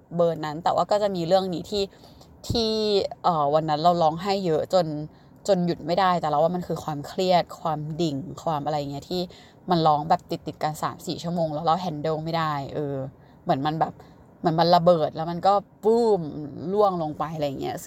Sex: female